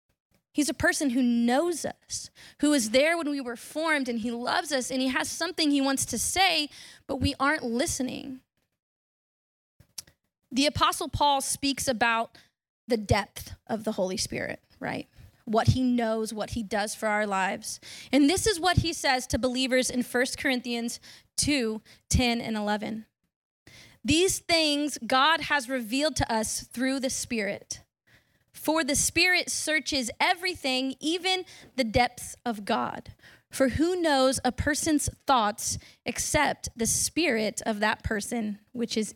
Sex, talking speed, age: female, 150 wpm, 20-39